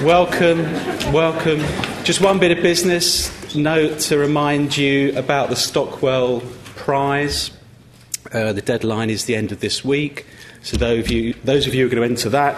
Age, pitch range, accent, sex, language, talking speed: 40-59, 110-135 Hz, British, male, English, 165 wpm